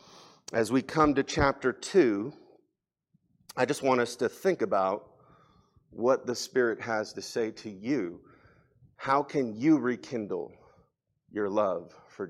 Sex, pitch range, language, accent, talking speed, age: male, 115-155 Hz, English, American, 135 wpm, 40-59